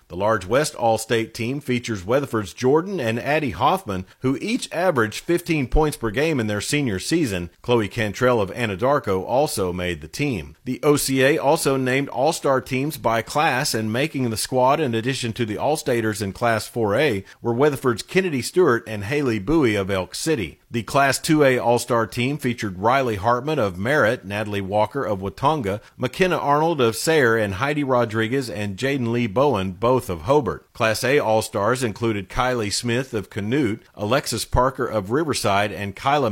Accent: American